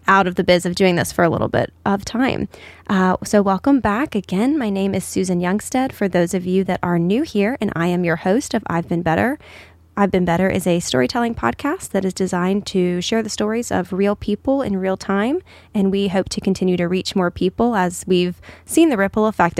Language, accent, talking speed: English, American, 230 wpm